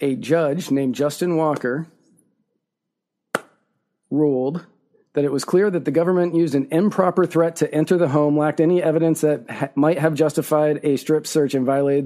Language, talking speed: English, 165 wpm